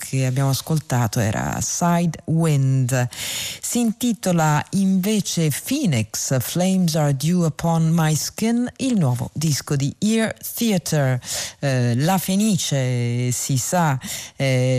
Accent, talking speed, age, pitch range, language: native, 115 wpm, 40-59, 140-175 Hz, Italian